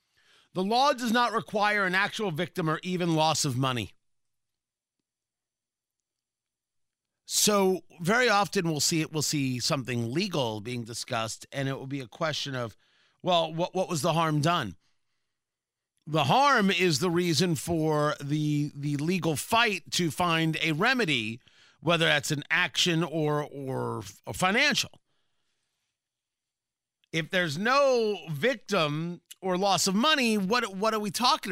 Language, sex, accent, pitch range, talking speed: English, male, American, 135-190 Hz, 140 wpm